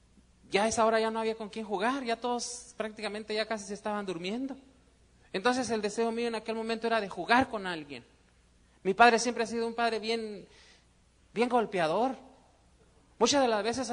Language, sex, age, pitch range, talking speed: Spanish, male, 30-49, 135-225 Hz, 190 wpm